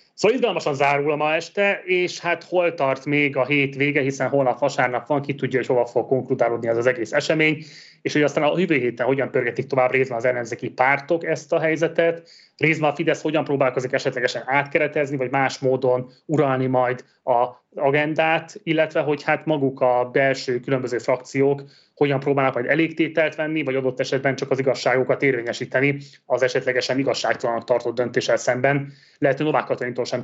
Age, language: 30-49, Hungarian